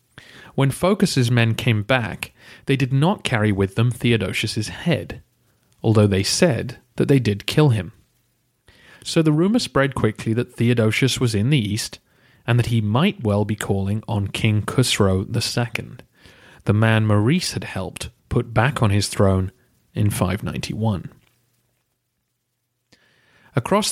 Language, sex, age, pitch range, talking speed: English, male, 30-49, 105-125 Hz, 140 wpm